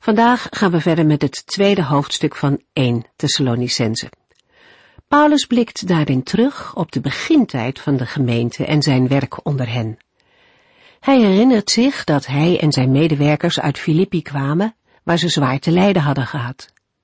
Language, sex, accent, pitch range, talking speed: Dutch, female, Dutch, 135-190 Hz, 155 wpm